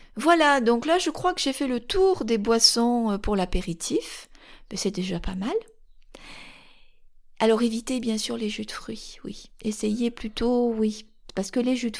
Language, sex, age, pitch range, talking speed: French, female, 40-59, 205-255 Hz, 180 wpm